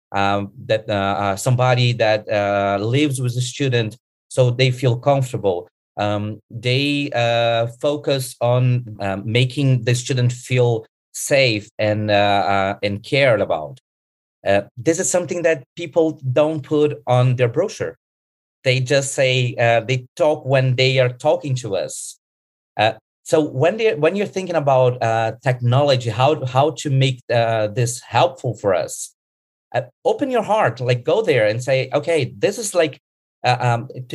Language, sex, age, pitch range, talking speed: English, male, 30-49, 115-155 Hz, 155 wpm